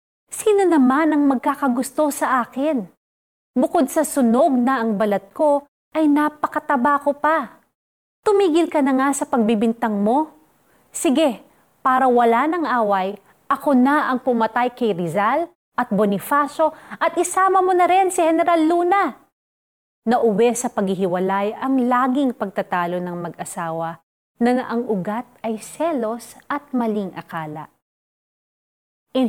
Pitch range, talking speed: 200-270 Hz, 130 wpm